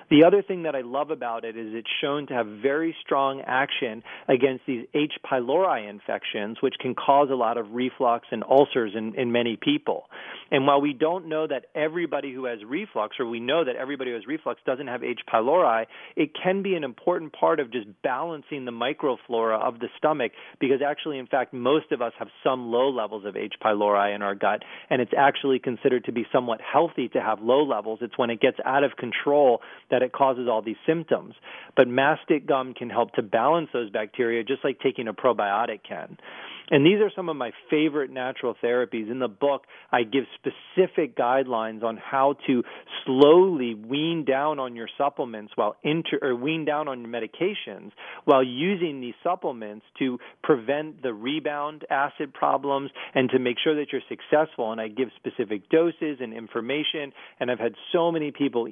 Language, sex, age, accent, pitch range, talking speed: English, male, 30-49, American, 115-150 Hz, 195 wpm